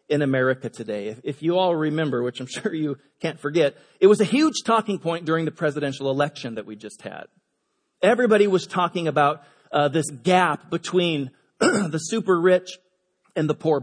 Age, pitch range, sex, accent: 40-59, 155-215 Hz, male, American